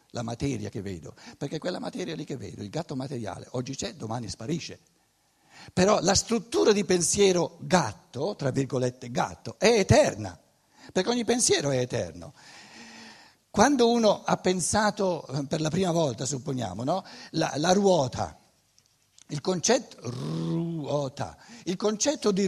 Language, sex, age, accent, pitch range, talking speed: Italian, male, 60-79, native, 130-210 Hz, 140 wpm